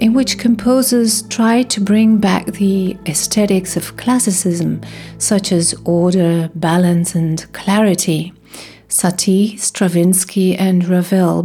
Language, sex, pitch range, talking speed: English, female, 180-240 Hz, 110 wpm